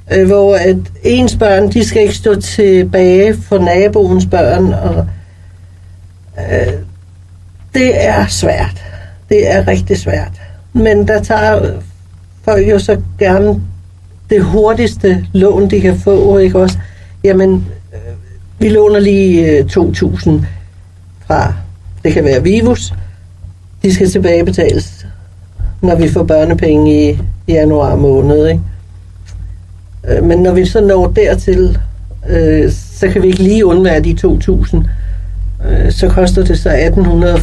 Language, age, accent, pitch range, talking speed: Danish, 60-79, native, 90-150 Hz, 130 wpm